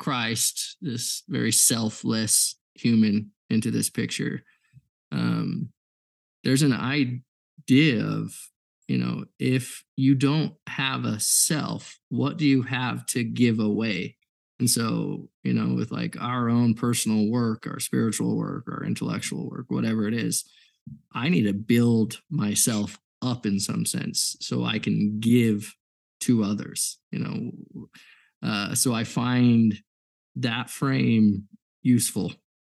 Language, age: English, 20-39